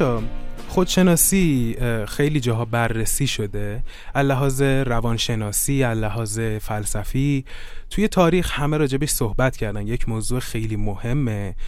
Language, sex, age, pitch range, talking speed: Persian, male, 20-39, 110-140 Hz, 100 wpm